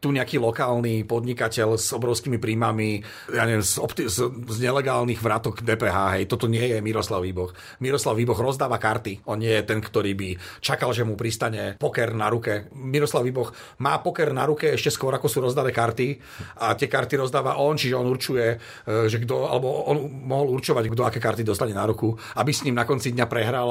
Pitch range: 110-130 Hz